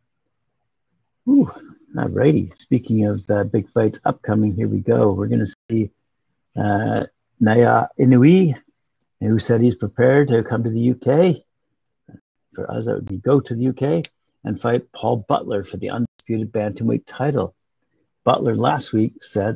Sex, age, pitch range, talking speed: male, 60-79, 105-125 Hz, 155 wpm